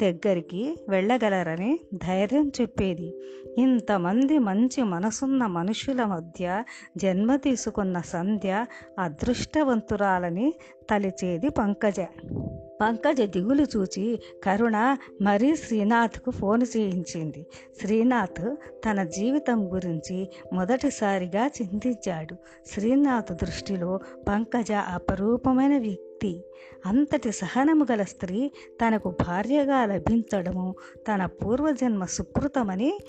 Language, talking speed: Telugu, 80 wpm